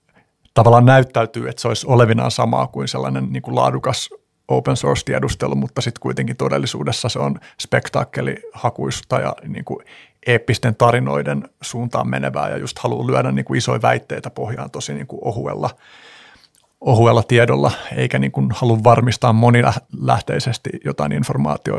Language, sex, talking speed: Finnish, male, 130 wpm